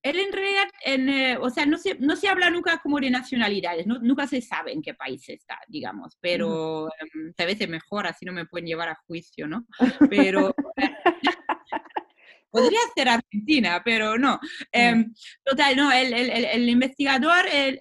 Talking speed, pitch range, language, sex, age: 170 wpm, 175-235 Hz, Spanish, female, 20-39